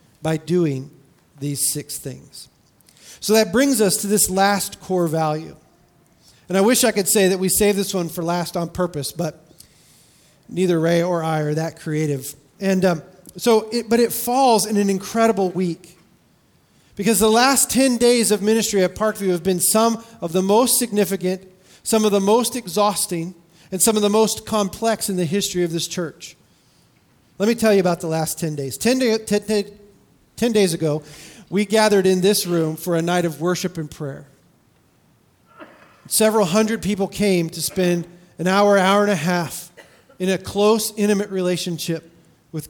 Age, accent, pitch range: 40-59, American, 170-215 Hz